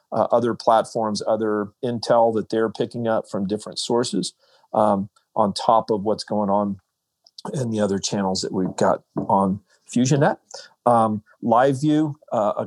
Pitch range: 105-120 Hz